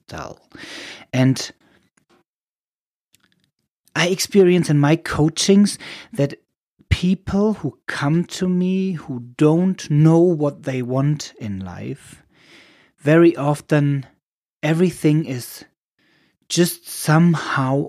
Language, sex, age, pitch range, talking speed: English, male, 30-49, 130-160 Hz, 85 wpm